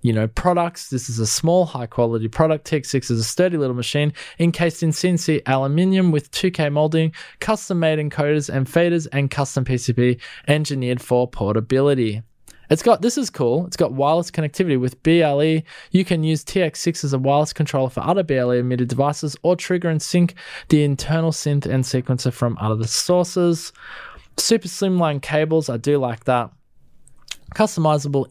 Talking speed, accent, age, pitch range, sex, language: 160 wpm, Australian, 20-39, 130-165 Hz, male, English